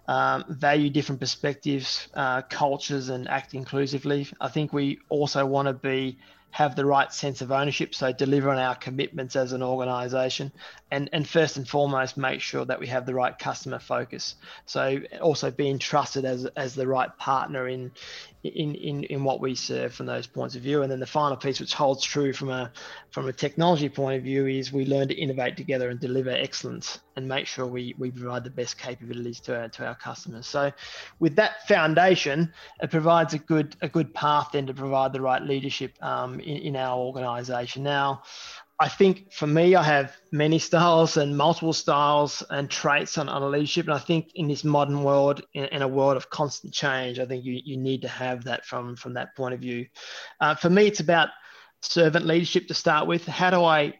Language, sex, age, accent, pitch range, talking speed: English, male, 20-39, Australian, 130-150 Hz, 205 wpm